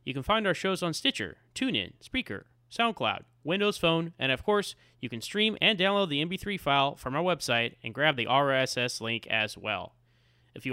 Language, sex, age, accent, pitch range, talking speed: English, male, 30-49, American, 120-170 Hz, 195 wpm